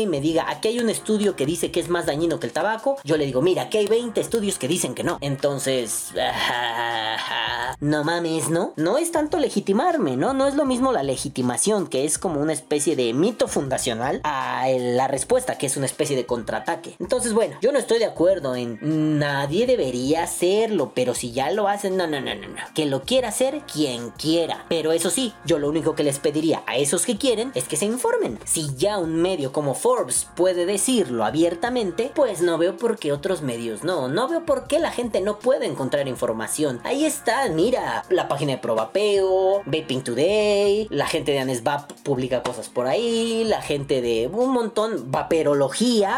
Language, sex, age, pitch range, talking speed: Spanish, female, 20-39, 145-230 Hz, 200 wpm